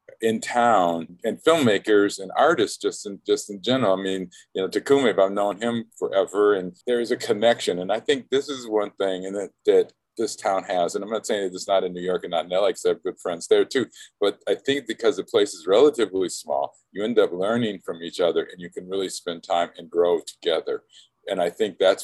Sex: male